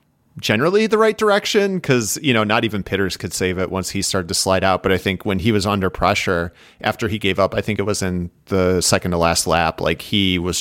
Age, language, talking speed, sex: 30-49, English, 250 wpm, male